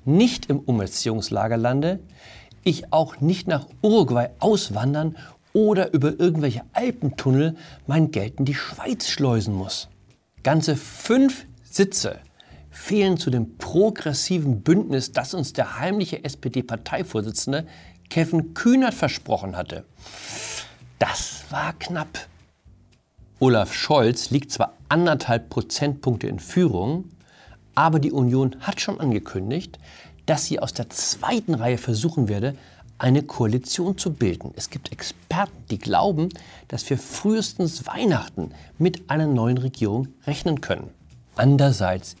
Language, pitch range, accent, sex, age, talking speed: German, 110-160 Hz, German, male, 50-69, 120 wpm